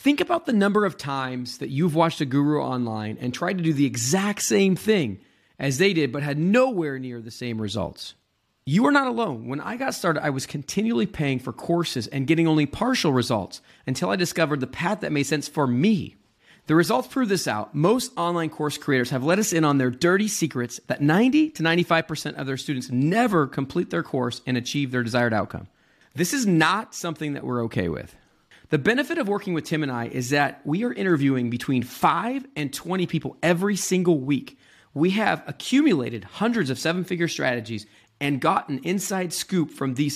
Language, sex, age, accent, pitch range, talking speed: English, male, 40-59, American, 130-185 Hz, 200 wpm